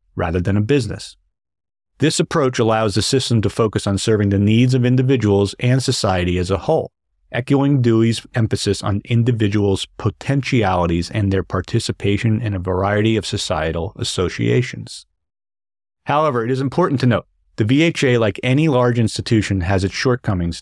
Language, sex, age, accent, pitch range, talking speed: English, male, 40-59, American, 95-125 Hz, 150 wpm